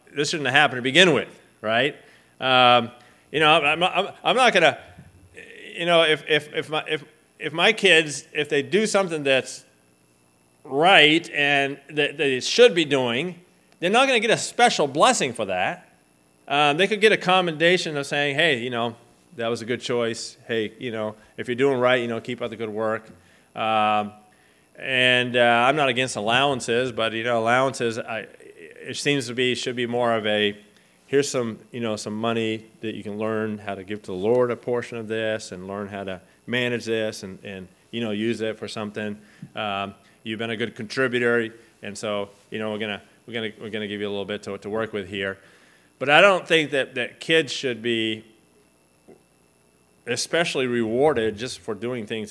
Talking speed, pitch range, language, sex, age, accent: 200 wpm, 105-140 Hz, English, male, 30-49, American